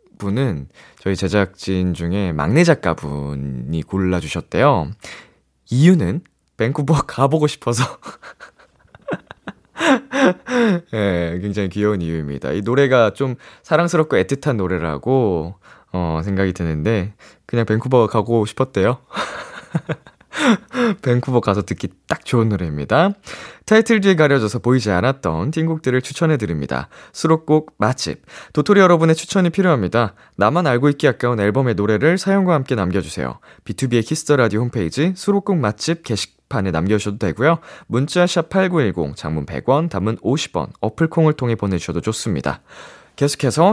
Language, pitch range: Korean, 95-160 Hz